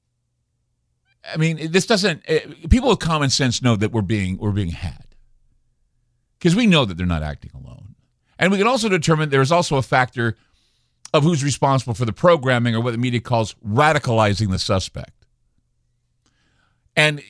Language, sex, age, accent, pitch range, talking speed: English, male, 50-69, American, 110-150 Hz, 165 wpm